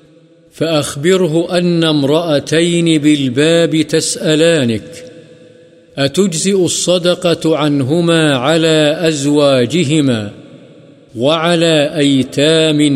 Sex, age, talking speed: male, 50-69, 55 wpm